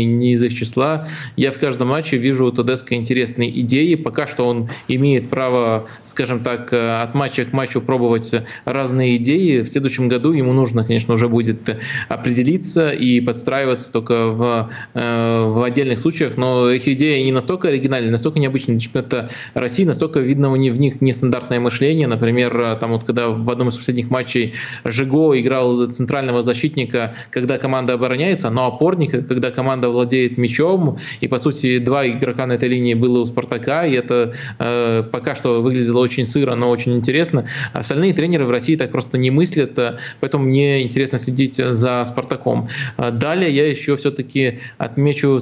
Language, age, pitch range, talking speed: Russian, 20-39, 120-135 Hz, 165 wpm